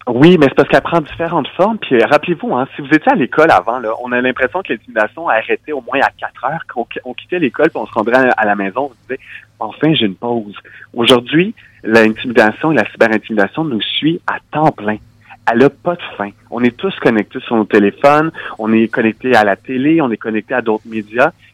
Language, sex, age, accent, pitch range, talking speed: French, male, 30-49, French, 105-130 Hz, 235 wpm